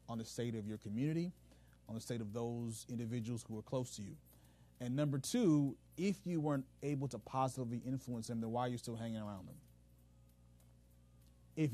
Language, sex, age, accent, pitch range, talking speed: English, male, 30-49, American, 95-145 Hz, 190 wpm